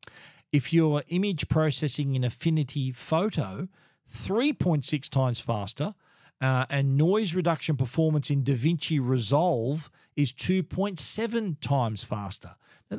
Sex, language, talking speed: male, English, 105 wpm